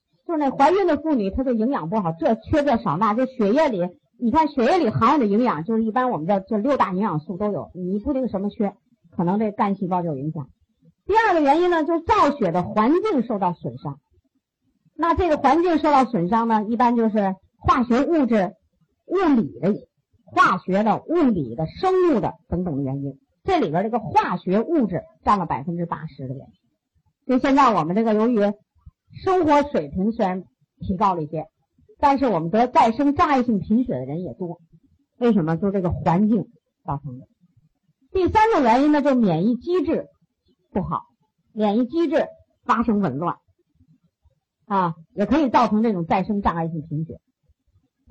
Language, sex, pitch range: Chinese, male, 180-290 Hz